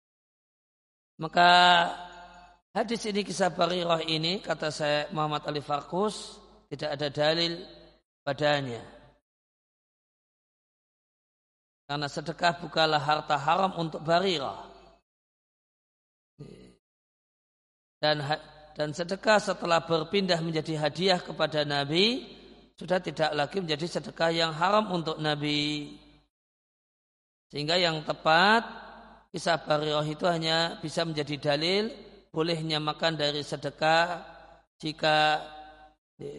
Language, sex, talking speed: Indonesian, male, 90 wpm